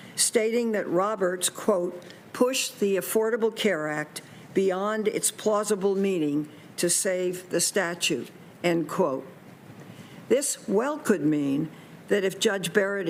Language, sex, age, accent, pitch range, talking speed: English, female, 60-79, American, 170-210 Hz, 125 wpm